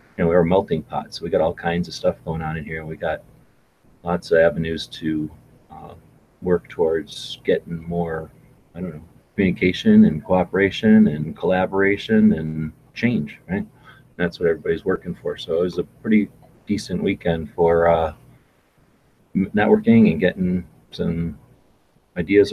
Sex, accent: male, American